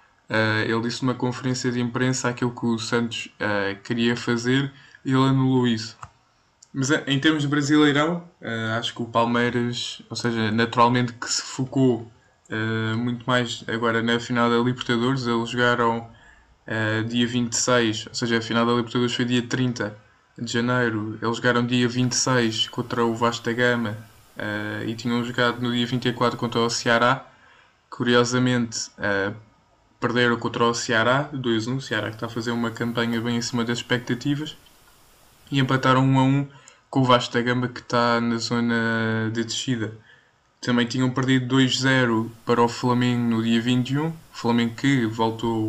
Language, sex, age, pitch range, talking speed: Portuguese, male, 20-39, 115-125 Hz, 145 wpm